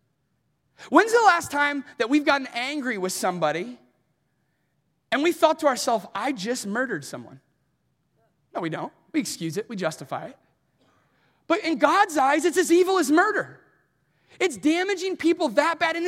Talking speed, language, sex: 160 wpm, English, male